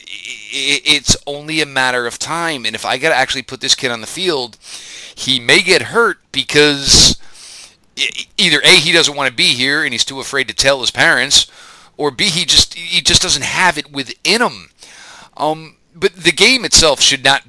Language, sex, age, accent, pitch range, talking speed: English, male, 40-59, American, 120-155 Hz, 190 wpm